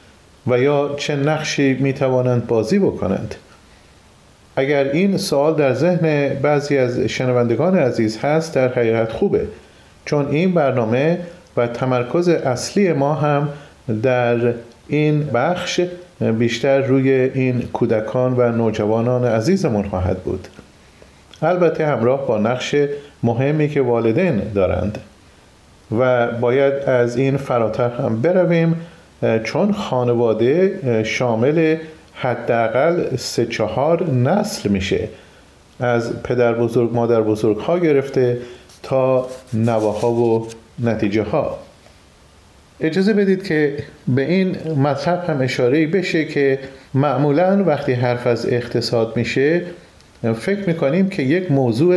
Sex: male